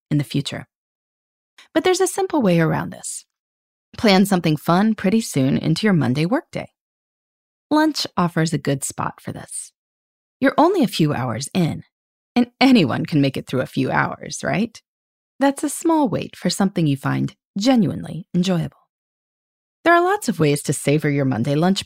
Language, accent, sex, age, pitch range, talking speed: English, American, female, 30-49, 145-245 Hz, 170 wpm